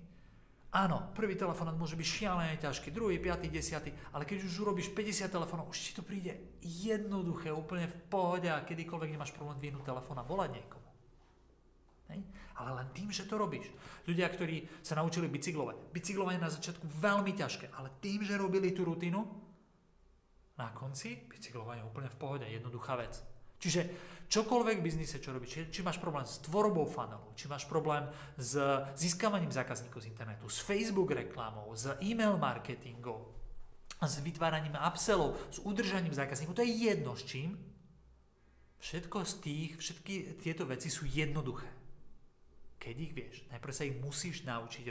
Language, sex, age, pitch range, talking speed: Slovak, male, 40-59, 135-190 Hz, 160 wpm